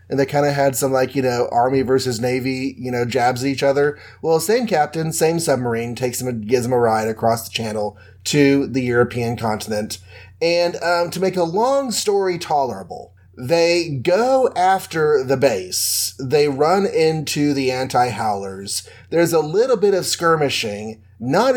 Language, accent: English, American